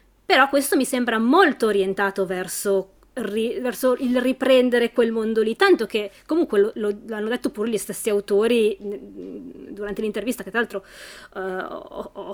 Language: Italian